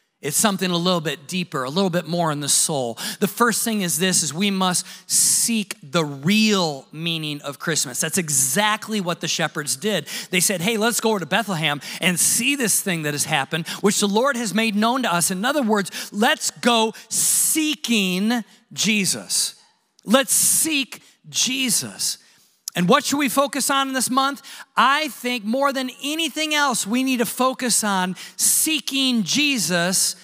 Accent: American